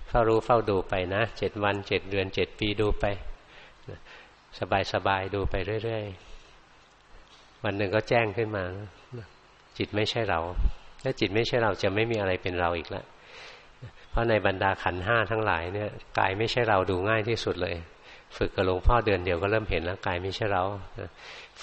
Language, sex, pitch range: Thai, male, 95-110 Hz